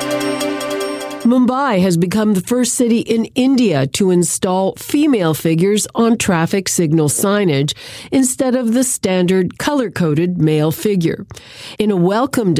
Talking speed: 125 wpm